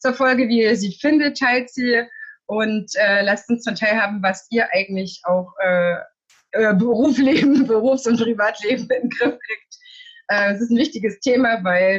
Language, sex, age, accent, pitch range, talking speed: German, female, 20-39, German, 185-245 Hz, 180 wpm